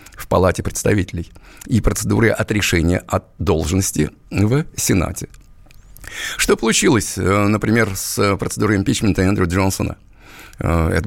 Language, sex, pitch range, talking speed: Russian, male, 90-105 Hz, 105 wpm